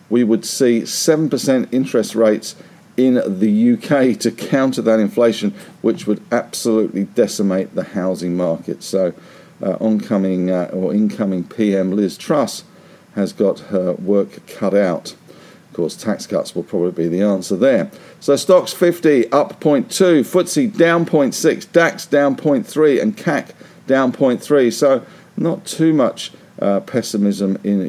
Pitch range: 105-155 Hz